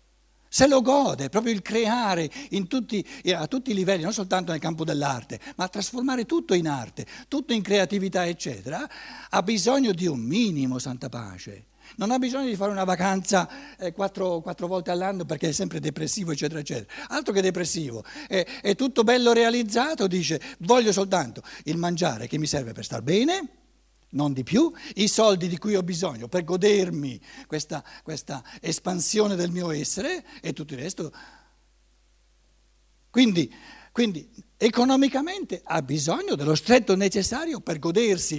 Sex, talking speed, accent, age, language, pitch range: male, 155 wpm, native, 60-79, Italian, 150-225 Hz